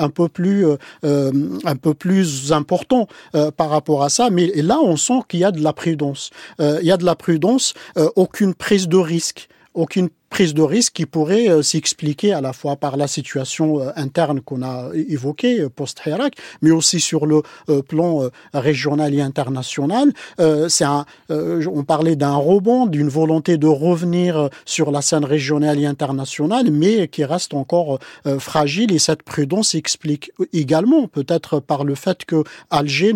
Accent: French